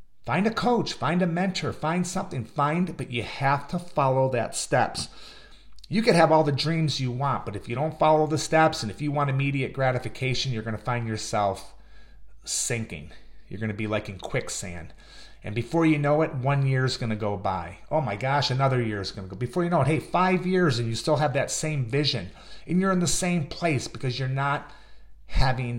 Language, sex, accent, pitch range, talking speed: English, male, American, 115-155 Hz, 210 wpm